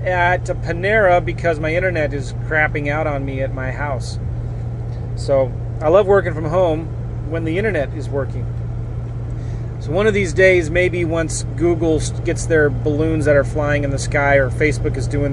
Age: 30-49